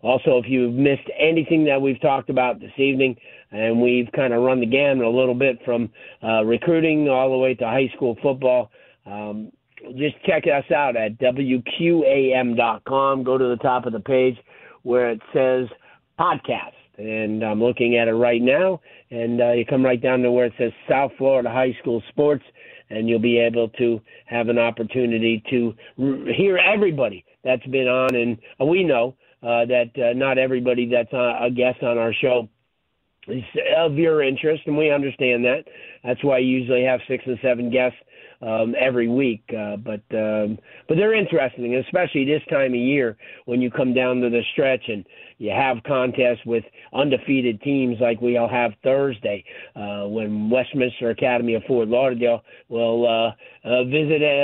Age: 50-69